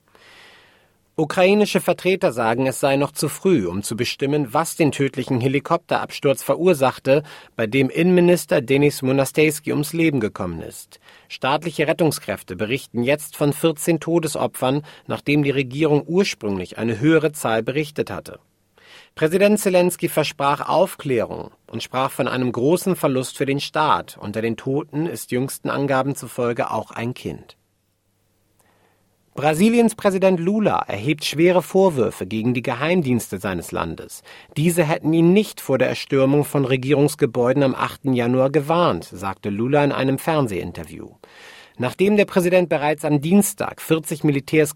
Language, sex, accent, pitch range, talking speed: German, male, German, 120-160 Hz, 135 wpm